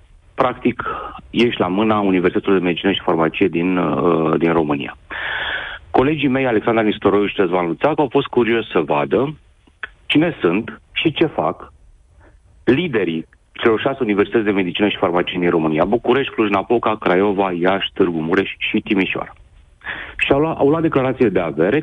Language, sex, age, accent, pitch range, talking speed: Romanian, male, 40-59, native, 85-125 Hz, 145 wpm